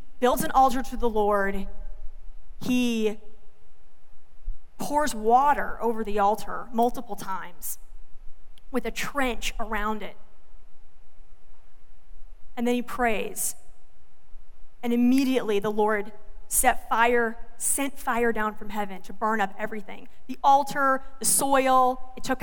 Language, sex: English, female